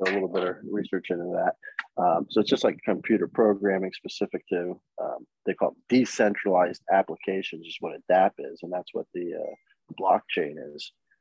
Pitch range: 95-110 Hz